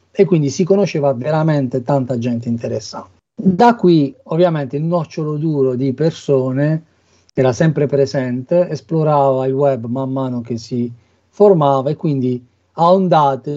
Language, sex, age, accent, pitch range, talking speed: Italian, male, 40-59, native, 130-160 Hz, 140 wpm